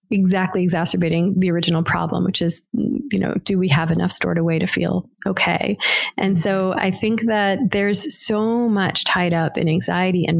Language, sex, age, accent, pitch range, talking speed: English, female, 30-49, American, 170-200 Hz, 180 wpm